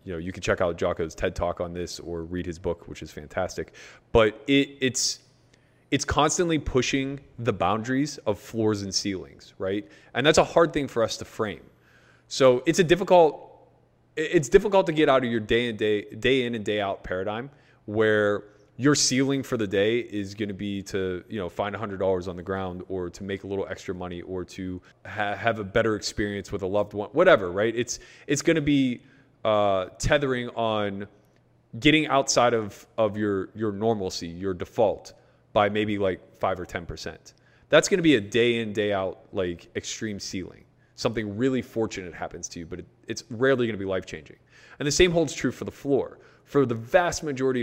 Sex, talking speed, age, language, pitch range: male, 200 wpm, 20-39, English, 100-130 Hz